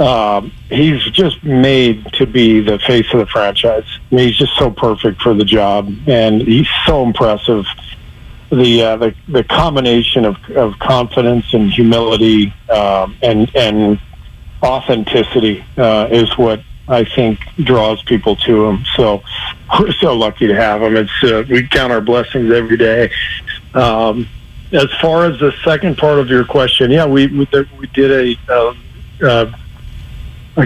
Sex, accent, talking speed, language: male, American, 160 wpm, English